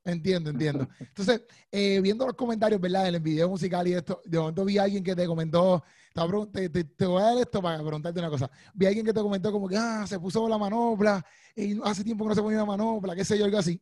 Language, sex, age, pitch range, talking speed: Spanish, male, 30-49, 165-210 Hz, 260 wpm